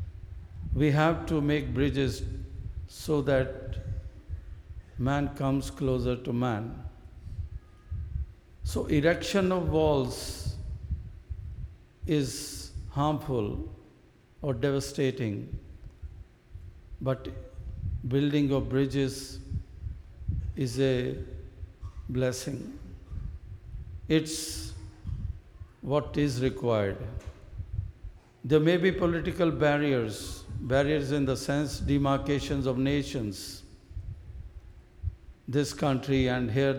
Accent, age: native, 60-79